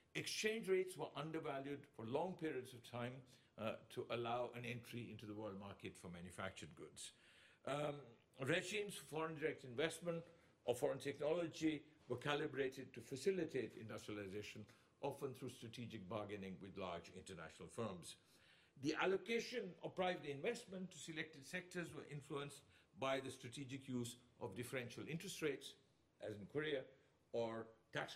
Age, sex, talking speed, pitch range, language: 60-79, male, 140 wpm, 115-165 Hz, English